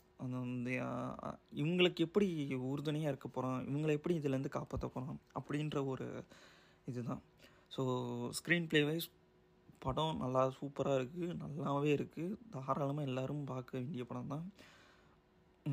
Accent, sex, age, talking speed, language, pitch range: native, male, 20-39, 115 wpm, Tamil, 130-165 Hz